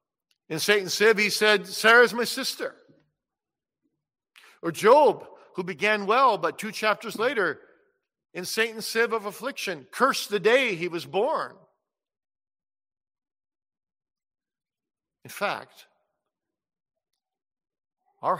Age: 50-69